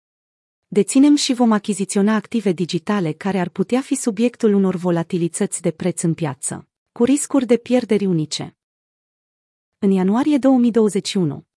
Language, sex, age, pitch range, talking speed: Romanian, female, 30-49, 180-230 Hz, 130 wpm